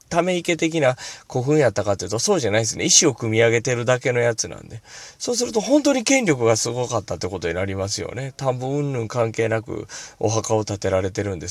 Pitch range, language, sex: 110-170 Hz, Japanese, male